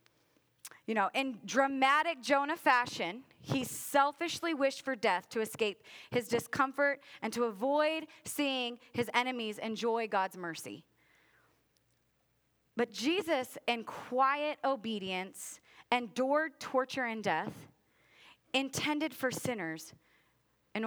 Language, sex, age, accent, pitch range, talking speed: English, female, 30-49, American, 215-280 Hz, 105 wpm